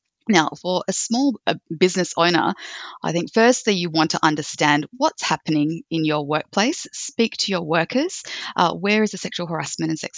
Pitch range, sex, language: 155-195 Hz, female, English